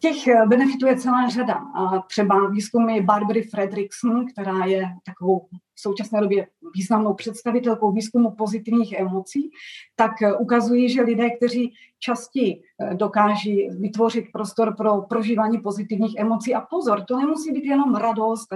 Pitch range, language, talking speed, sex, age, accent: 200-235 Hz, Czech, 135 wpm, female, 30-49, native